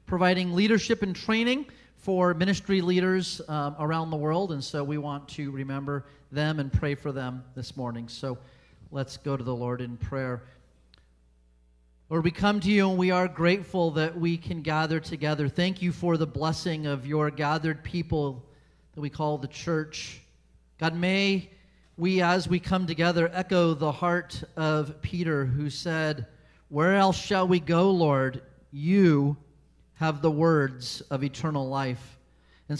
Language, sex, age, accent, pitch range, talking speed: English, male, 40-59, American, 145-180 Hz, 160 wpm